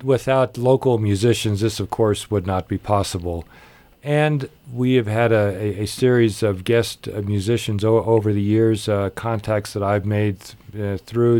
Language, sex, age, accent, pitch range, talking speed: English, male, 40-59, American, 105-120 Hz, 165 wpm